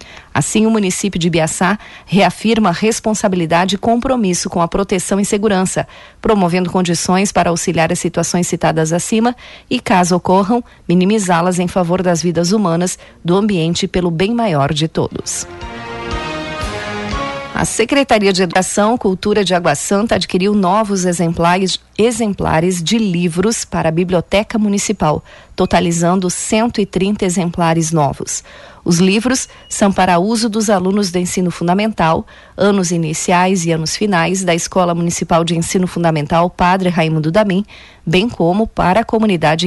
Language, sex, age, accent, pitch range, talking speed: Portuguese, female, 40-59, Brazilian, 170-205 Hz, 135 wpm